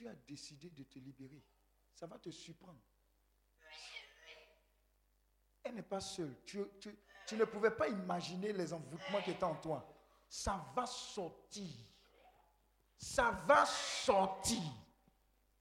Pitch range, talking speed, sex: 180-280 Hz, 125 wpm, male